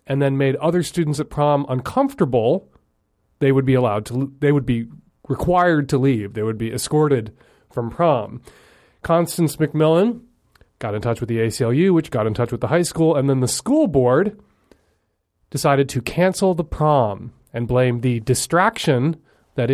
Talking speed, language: 170 wpm, English